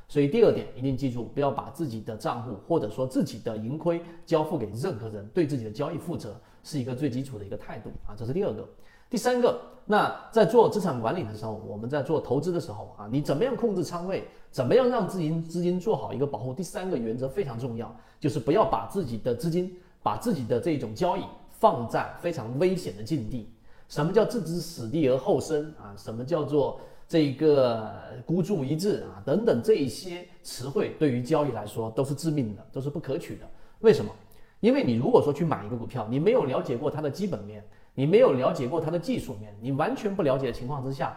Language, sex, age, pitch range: Chinese, male, 40-59, 115-170 Hz